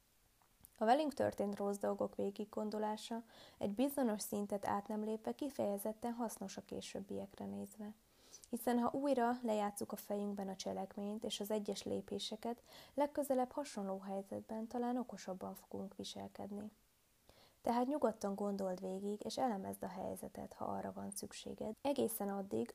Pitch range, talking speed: 190-230 Hz, 135 wpm